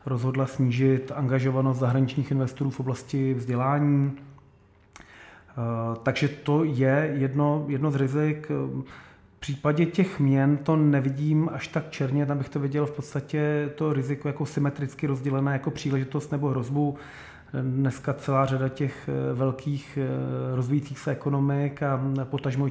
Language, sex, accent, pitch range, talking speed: Czech, male, native, 130-145 Hz, 130 wpm